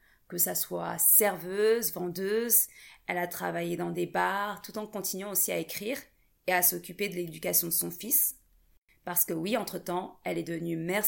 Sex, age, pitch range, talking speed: female, 30-49, 165-200 Hz, 180 wpm